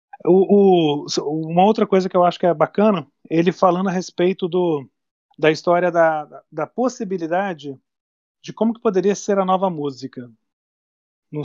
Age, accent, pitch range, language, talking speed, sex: 40-59, Brazilian, 150-200 Hz, Portuguese, 145 wpm, male